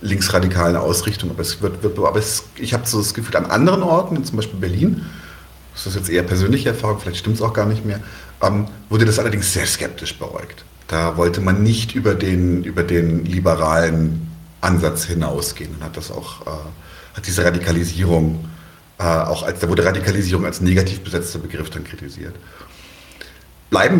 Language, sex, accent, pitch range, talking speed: German, male, German, 90-120 Hz, 180 wpm